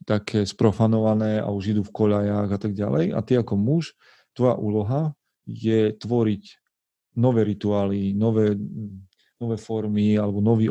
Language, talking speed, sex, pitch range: Slovak, 140 wpm, male, 105-120 Hz